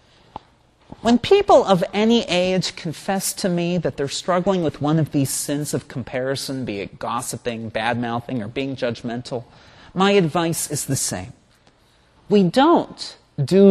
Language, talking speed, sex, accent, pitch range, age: English, 145 wpm, male, American, 135-195 Hz, 40-59